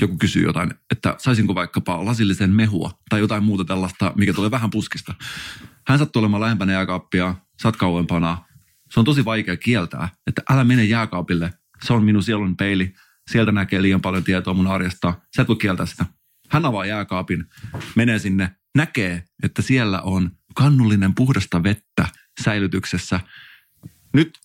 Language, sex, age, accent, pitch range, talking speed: Finnish, male, 30-49, native, 90-115 Hz, 155 wpm